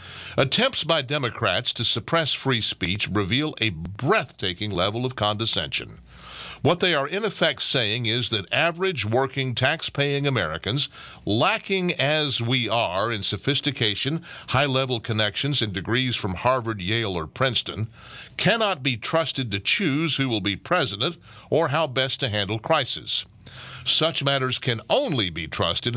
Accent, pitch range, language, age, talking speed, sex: American, 110-145 Hz, English, 50-69, 140 wpm, male